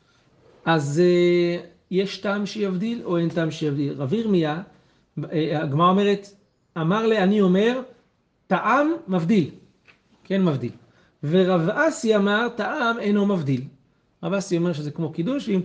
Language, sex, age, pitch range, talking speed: Hebrew, male, 40-59, 145-195 Hz, 125 wpm